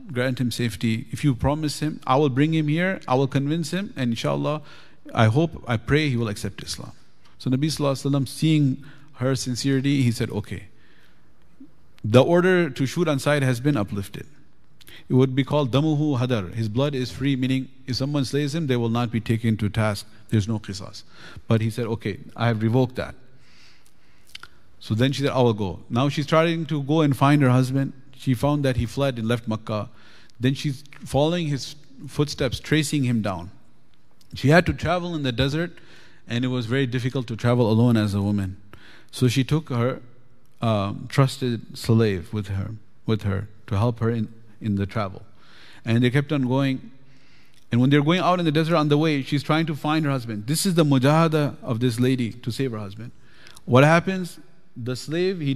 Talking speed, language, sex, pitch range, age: 200 wpm, English, male, 115-145 Hz, 50-69